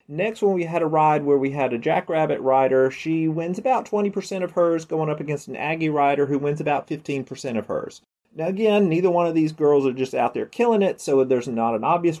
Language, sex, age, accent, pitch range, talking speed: English, male, 30-49, American, 130-170 Hz, 235 wpm